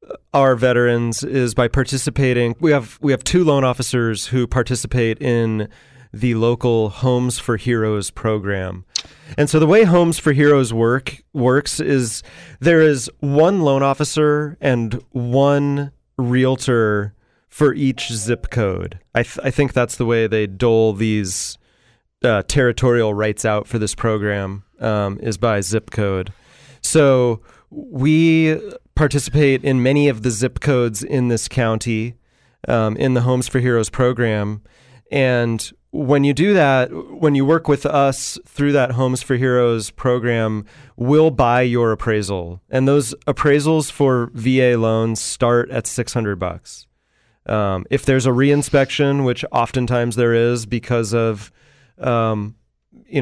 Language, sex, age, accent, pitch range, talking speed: English, male, 30-49, American, 110-135 Hz, 145 wpm